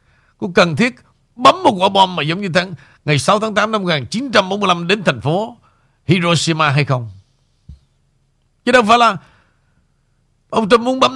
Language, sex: Vietnamese, male